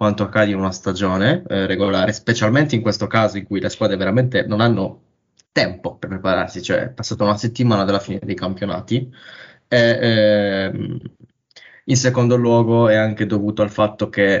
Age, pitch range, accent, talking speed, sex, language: 20-39, 105-120 Hz, native, 165 wpm, male, Italian